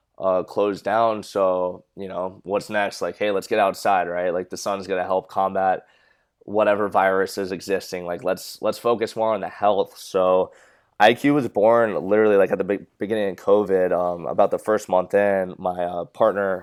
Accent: American